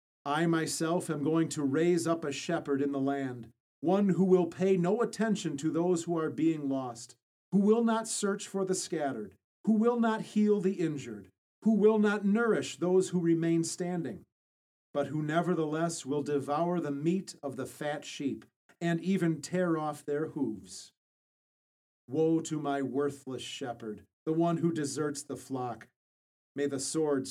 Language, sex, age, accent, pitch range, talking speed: English, male, 40-59, American, 140-175 Hz, 165 wpm